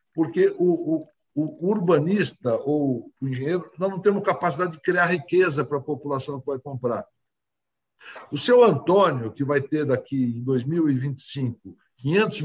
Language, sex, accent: Portuguese, male, Brazilian